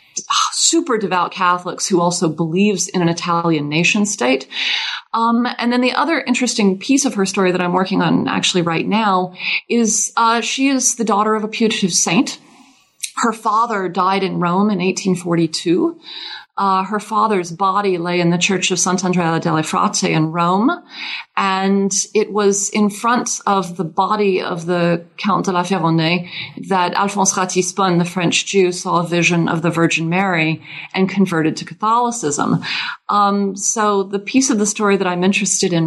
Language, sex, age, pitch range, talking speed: English, female, 30-49, 170-205 Hz, 170 wpm